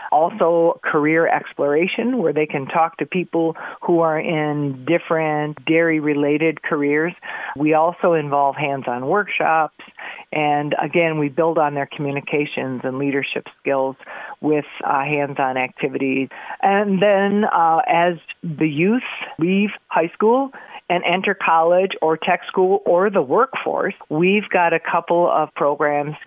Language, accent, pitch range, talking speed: English, American, 150-175 Hz, 135 wpm